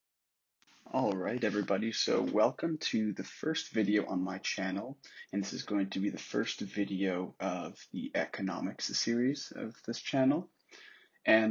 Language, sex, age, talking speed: English, male, 20-39, 150 wpm